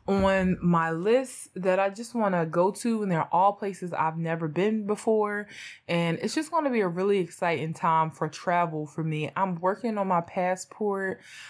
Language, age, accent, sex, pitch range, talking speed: English, 20-39, American, female, 165-210 Hz, 195 wpm